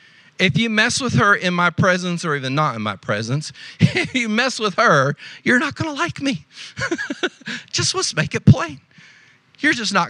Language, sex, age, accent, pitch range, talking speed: English, male, 40-59, American, 145-225 Hz, 195 wpm